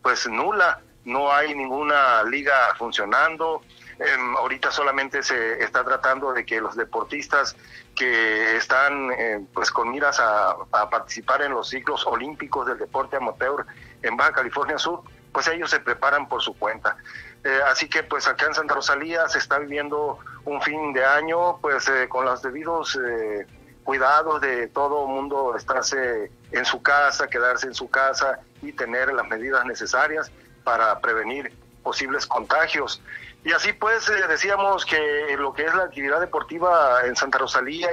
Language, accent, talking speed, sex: Spanish, Mexican, 160 wpm, male